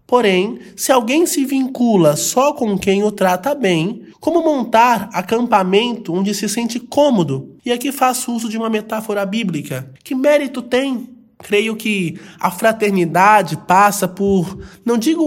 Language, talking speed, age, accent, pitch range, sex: Portuguese, 145 wpm, 20-39, Brazilian, 185-245 Hz, male